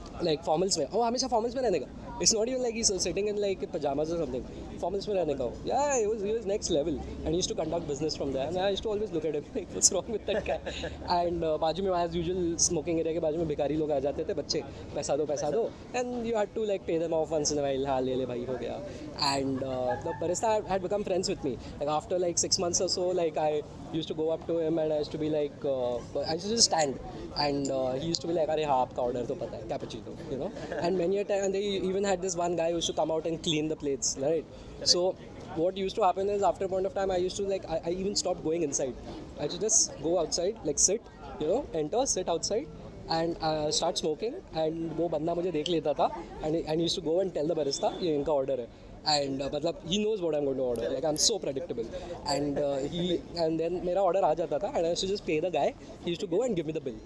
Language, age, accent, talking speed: English, 20-39, Indian, 245 wpm